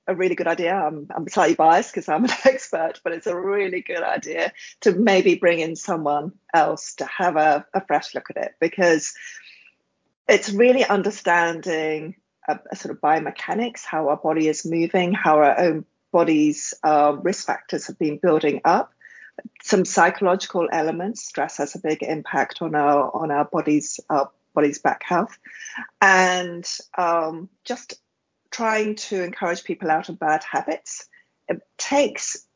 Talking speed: 160 wpm